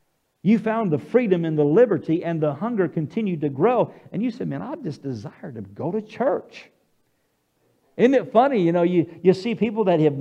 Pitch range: 175-235 Hz